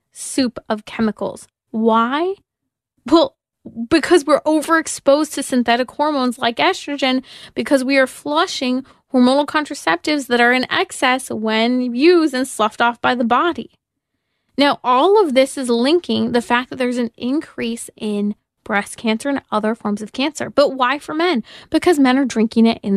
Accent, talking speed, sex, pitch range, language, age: American, 160 wpm, female, 225-295 Hz, English, 20-39